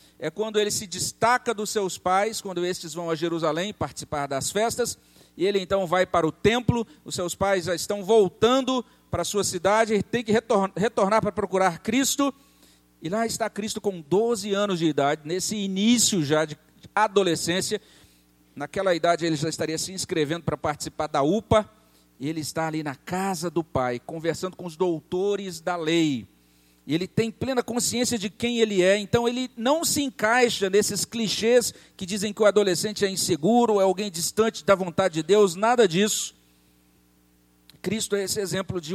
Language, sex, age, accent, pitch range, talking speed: Portuguese, male, 50-69, Brazilian, 160-220 Hz, 175 wpm